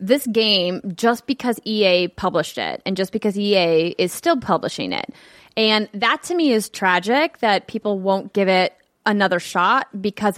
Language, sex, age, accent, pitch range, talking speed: English, female, 20-39, American, 180-240 Hz, 170 wpm